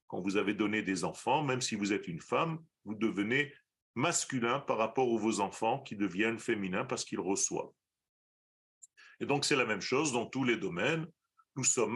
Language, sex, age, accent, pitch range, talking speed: French, male, 40-59, French, 105-145 Hz, 190 wpm